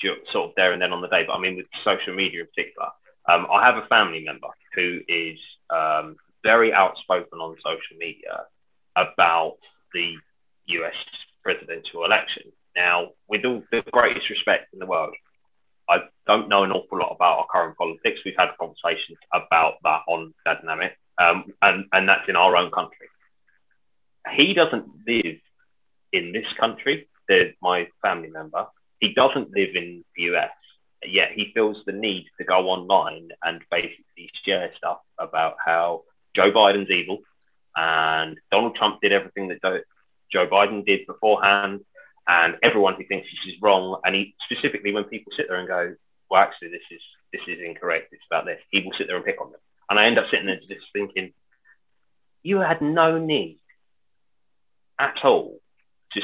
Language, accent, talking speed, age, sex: English, British, 175 wpm, 20-39, male